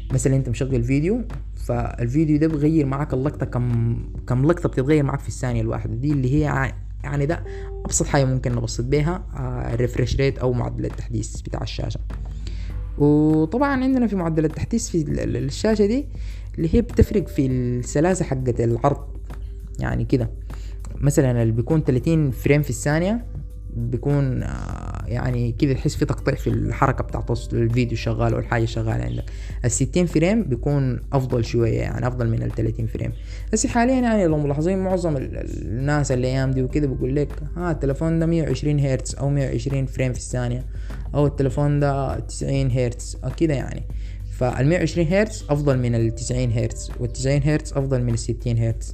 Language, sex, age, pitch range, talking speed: Arabic, female, 20-39, 115-145 Hz, 155 wpm